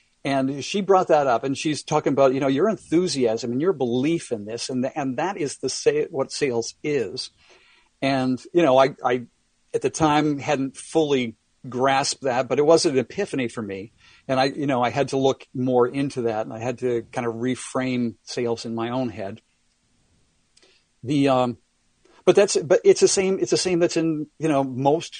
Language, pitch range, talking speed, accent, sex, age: English, 115-140 Hz, 205 wpm, American, male, 50-69